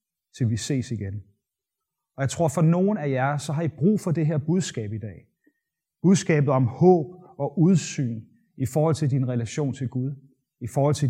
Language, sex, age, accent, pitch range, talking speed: Danish, male, 30-49, native, 130-160 Hz, 195 wpm